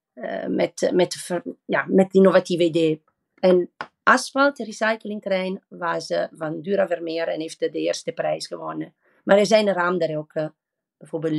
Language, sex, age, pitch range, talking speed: Dutch, female, 40-59, 170-205 Hz, 165 wpm